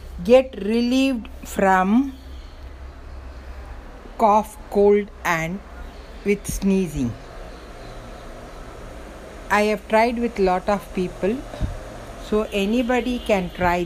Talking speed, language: 80 wpm, Tamil